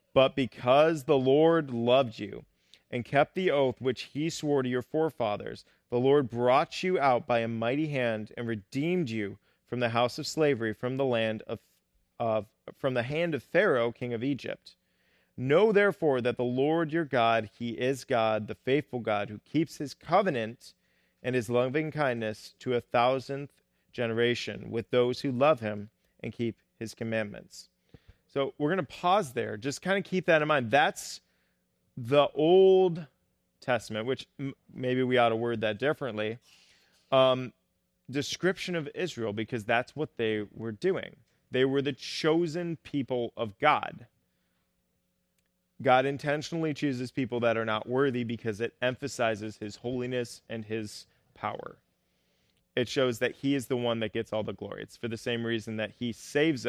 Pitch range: 110-140 Hz